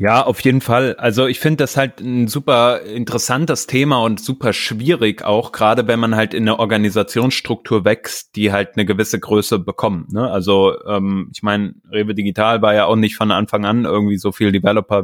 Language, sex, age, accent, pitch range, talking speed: German, male, 20-39, German, 100-120 Hz, 195 wpm